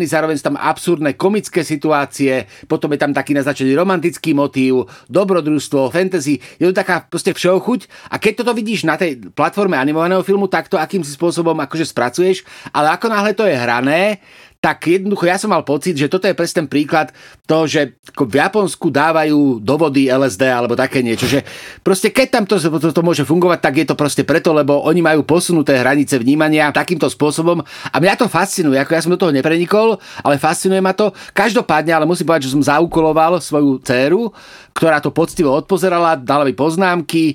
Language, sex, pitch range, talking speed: Slovak, male, 145-180 Hz, 185 wpm